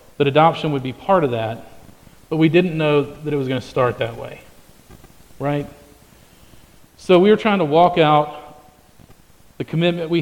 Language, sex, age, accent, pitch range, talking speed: English, male, 40-59, American, 130-155 Hz, 175 wpm